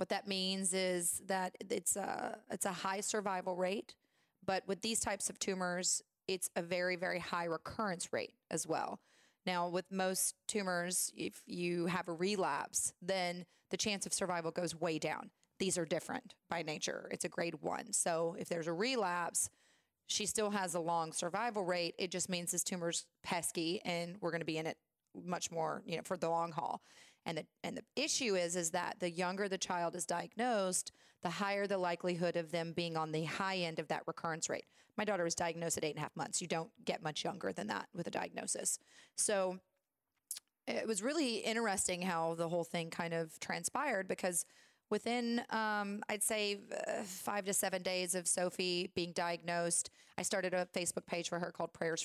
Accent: American